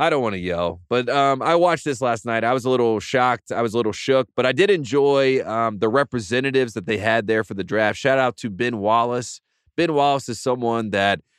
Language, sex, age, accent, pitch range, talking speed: English, male, 30-49, American, 110-130 Hz, 240 wpm